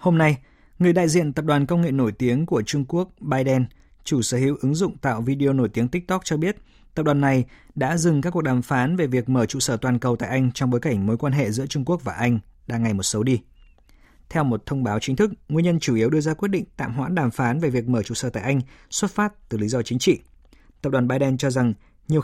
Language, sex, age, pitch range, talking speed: Vietnamese, male, 20-39, 115-150 Hz, 265 wpm